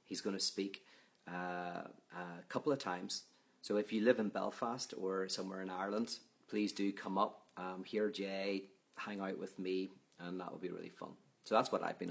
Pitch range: 95-120 Hz